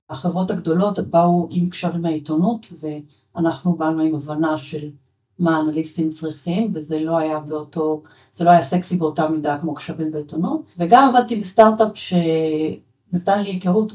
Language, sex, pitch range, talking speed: Hebrew, female, 155-180 Hz, 140 wpm